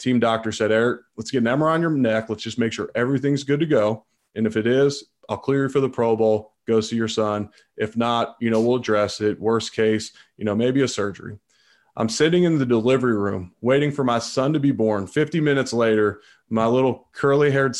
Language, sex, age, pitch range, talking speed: English, male, 30-49, 110-130 Hz, 225 wpm